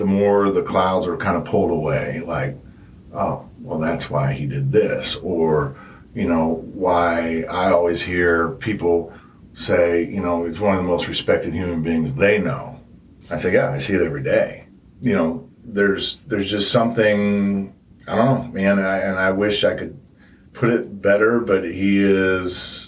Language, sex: English, male